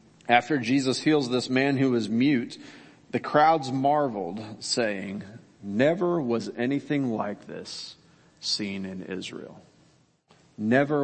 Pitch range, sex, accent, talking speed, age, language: 115-140 Hz, male, American, 115 wpm, 40-59, English